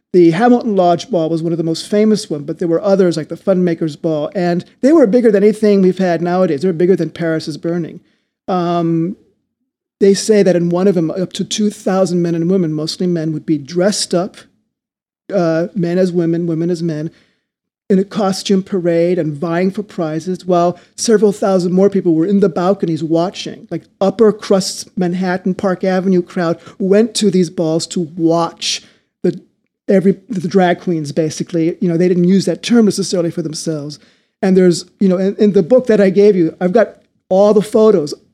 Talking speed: 195 wpm